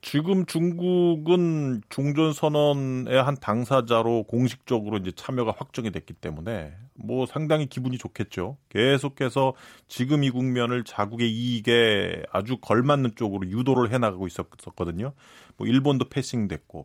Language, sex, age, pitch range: Korean, male, 30-49, 110-145 Hz